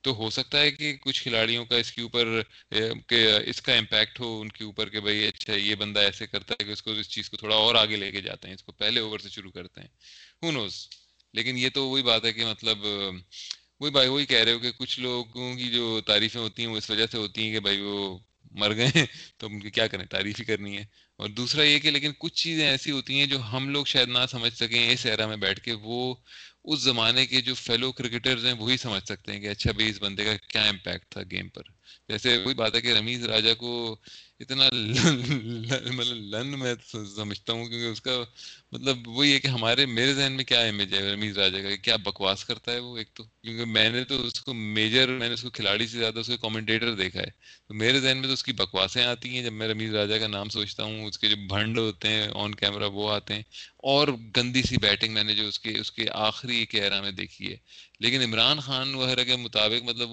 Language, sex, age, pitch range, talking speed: Urdu, male, 20-39, 105-125 Hz, 220 wpm